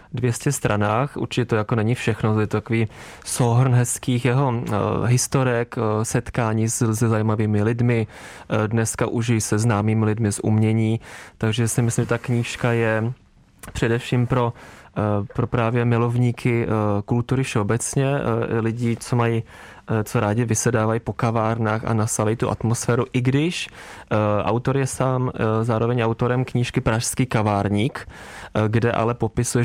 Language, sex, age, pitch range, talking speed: Czech, male, 20-39, 105-120 Hz, 135 wpm